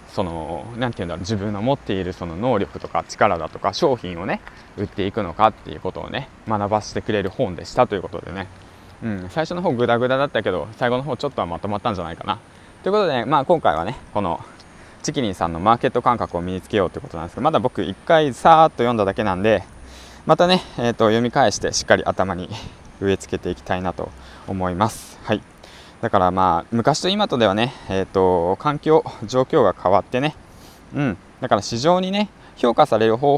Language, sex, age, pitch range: Japanese, male, 20-39, 95-140 Hz